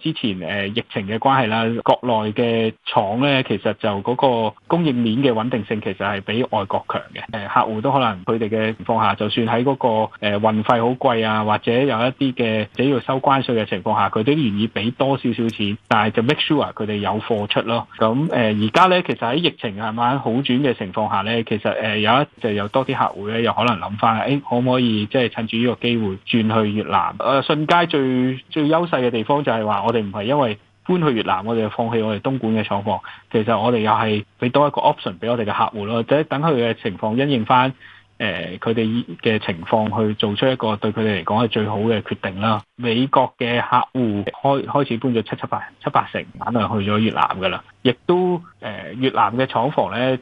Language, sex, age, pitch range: Chinese, male, 20-39, 110-130 Hz